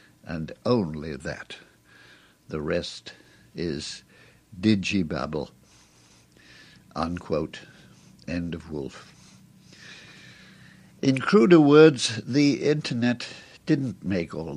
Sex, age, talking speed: male, 60-79, 80 wpm